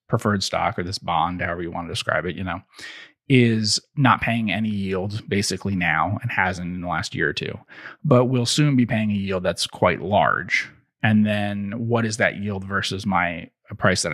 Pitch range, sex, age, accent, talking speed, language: 95-115 Hz, male, 30-49, American, 210 wpm, English